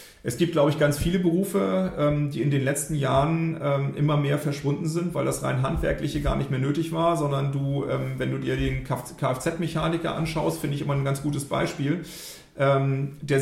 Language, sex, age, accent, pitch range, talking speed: German, male, 40-59, German, 140-160 Hz, 185 wpm